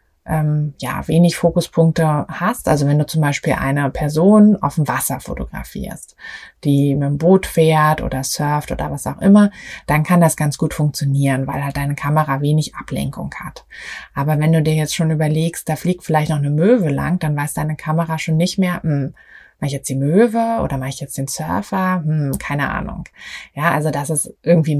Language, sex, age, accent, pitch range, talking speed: German, female, 20-39, German, 150-185 Hz, 195 wpm